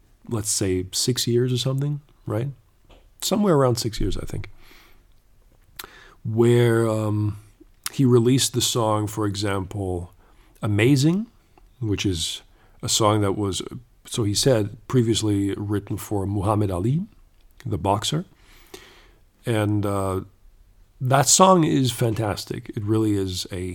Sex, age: male, 40-59